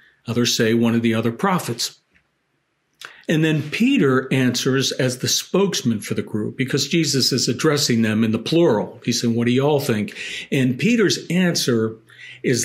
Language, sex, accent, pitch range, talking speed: English, male, American, 115-140 Hz, 170 wpm